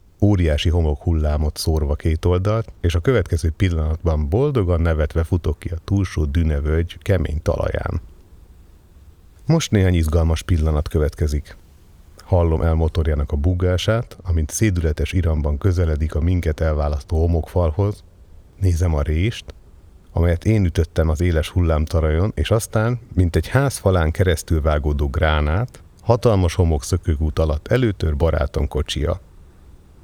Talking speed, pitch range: 120 wpm, 80-95 Hz